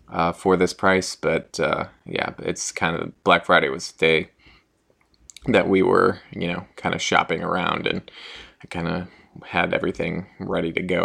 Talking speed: 180 wpm